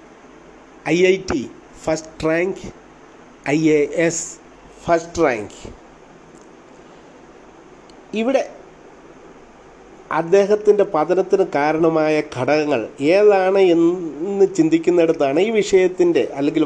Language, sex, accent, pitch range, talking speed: Malayalam, male, native, 150-210 Hz, 75 wpm